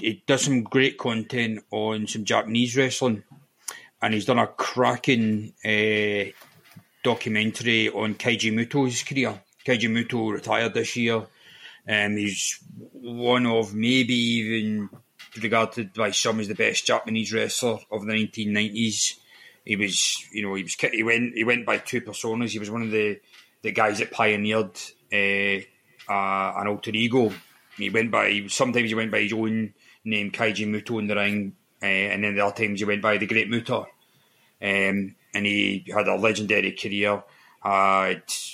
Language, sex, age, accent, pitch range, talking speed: English, male, 30-49, British, 100-115 Hz, 165 wpm